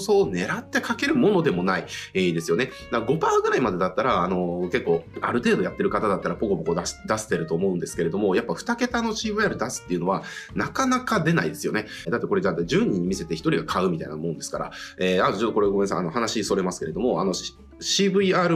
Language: Japanese